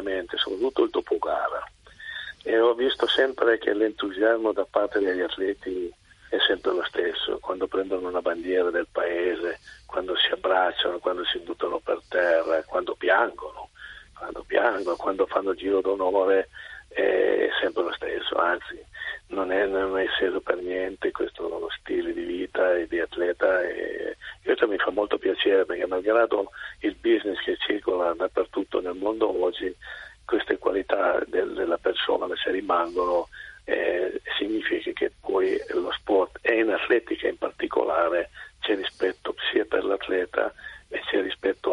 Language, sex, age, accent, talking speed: Italian, male, 50-69, native, 145 wpm